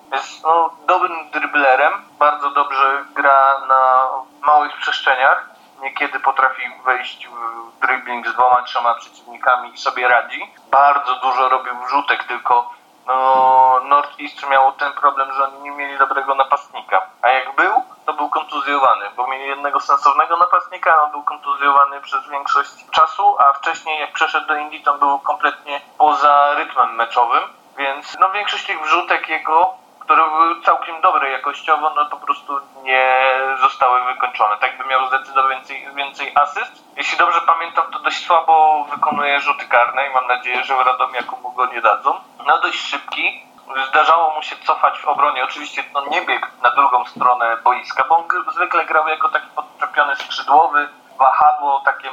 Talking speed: 155 wpm